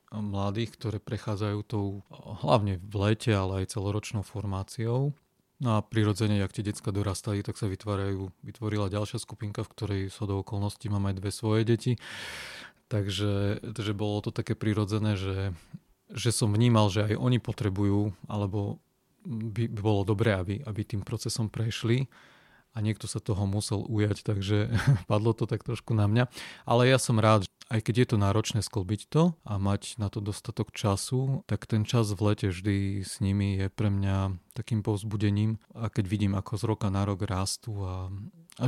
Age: 30-49